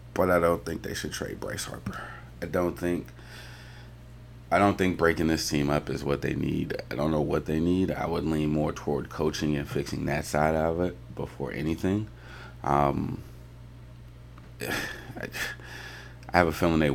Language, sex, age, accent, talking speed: English, male, 30-49, American, 175 wpm